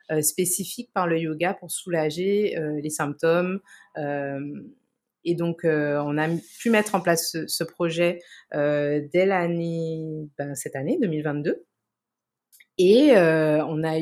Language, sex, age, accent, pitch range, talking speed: French, female, 30-49, French, 150-180 Hz, 140 wpm